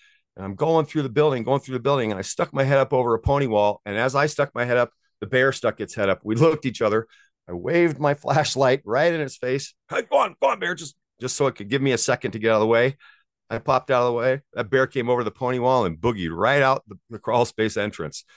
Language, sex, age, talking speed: English, male, 50-69, 290 wpm